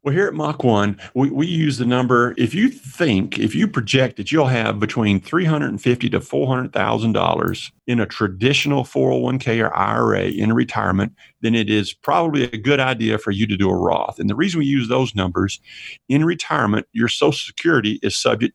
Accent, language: American, English